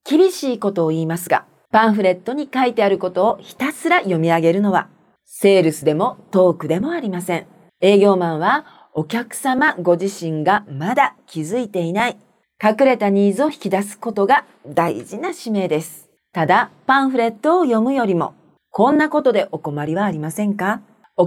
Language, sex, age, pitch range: Japanese, female, 40-59, 170-240 Hz